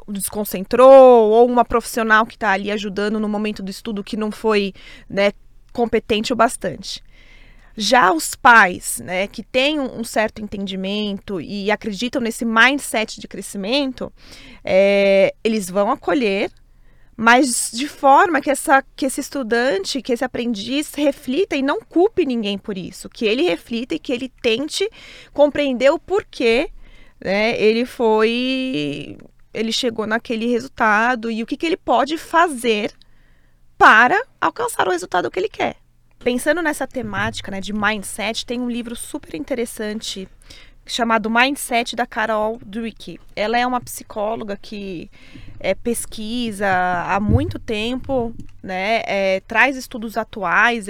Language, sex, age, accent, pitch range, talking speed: Portuguese, female, 20-39, Brazilian, 210-265 Hz, 135 wpm